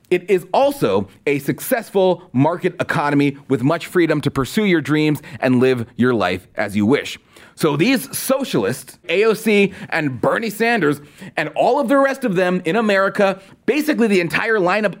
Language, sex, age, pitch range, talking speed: English, male, 30-49, 155-230 Hz, 165 wpm